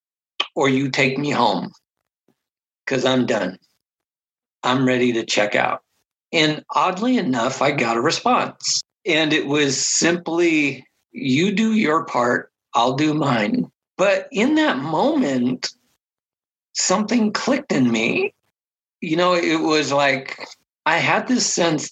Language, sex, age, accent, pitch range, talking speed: English, male, 50-69, American, 140-195 Hz, 130 wpm